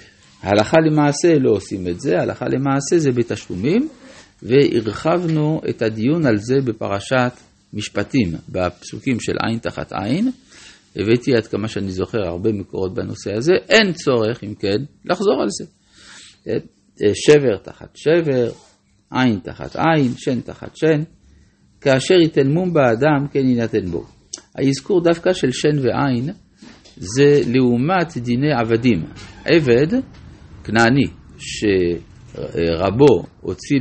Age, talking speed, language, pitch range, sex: 50-69, 120 wpm, Hebrew, 105-145 Hz, male